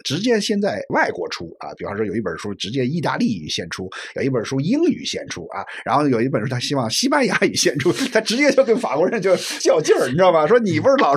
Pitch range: 110-175 Hz